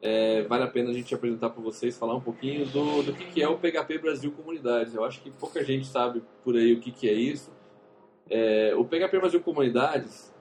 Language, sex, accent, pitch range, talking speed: Portuguese, male, Brazilian, 120-185 Hz, 225 wpm